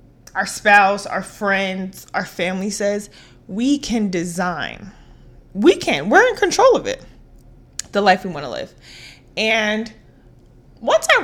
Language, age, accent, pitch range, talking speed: English, 20-39, American, 185-235 Hz, 140 wpm